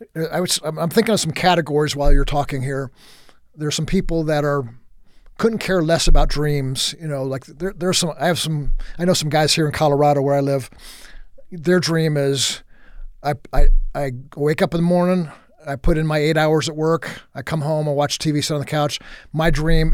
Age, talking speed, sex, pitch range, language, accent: 50-69, 215 wpm, male, 145-165 Hz, English, American